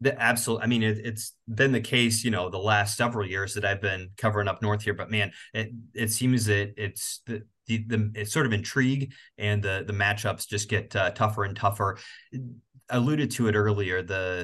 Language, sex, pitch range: English, male, 105-115 Hz